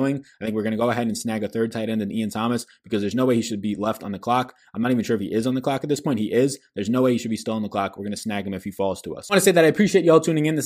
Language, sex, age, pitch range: English, male, 20-39, 110-145 Hz